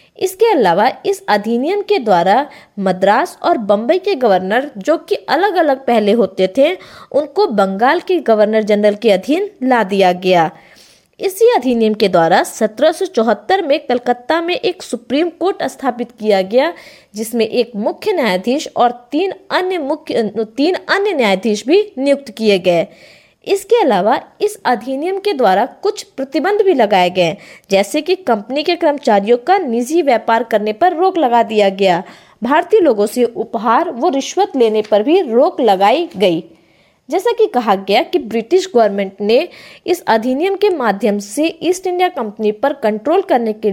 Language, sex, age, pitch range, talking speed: Hindi, female, 20-39, 215-355 Hz, 155 wpm